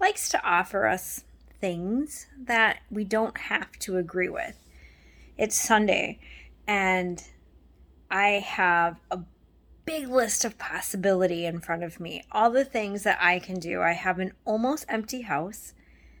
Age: 20-39